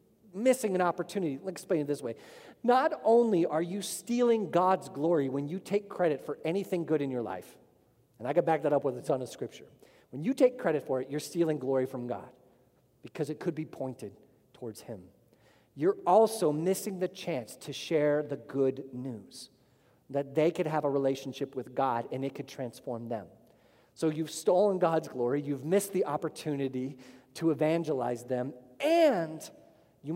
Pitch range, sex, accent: 130-180 Hz, male, American